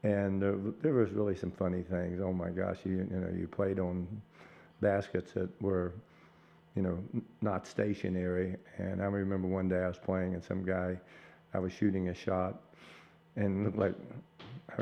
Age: 50-69